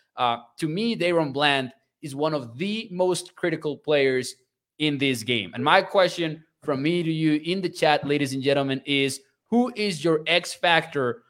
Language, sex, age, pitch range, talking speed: English, male, 20-39, 135-170 Hz, 180 wpm